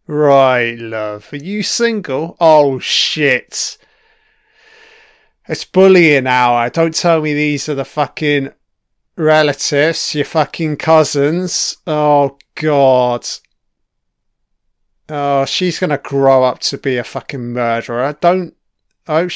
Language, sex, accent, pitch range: English, male, British, 140-195 Hz